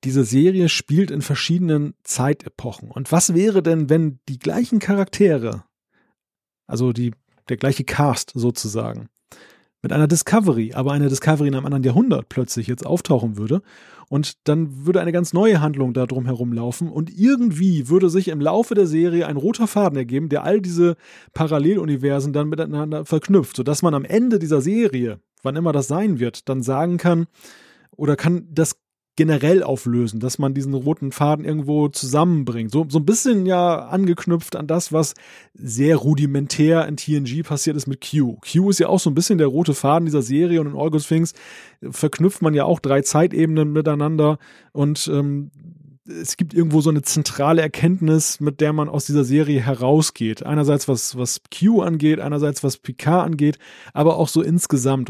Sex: male